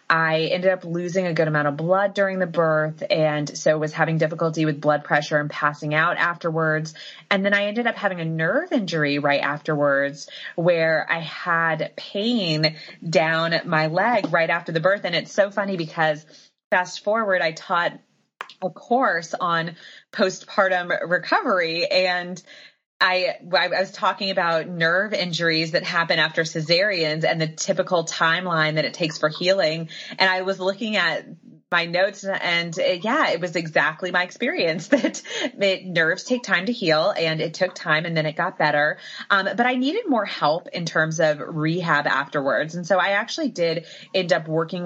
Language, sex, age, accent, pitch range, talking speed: English, female, 20-39, American, 160-190 Hz, 175 wpm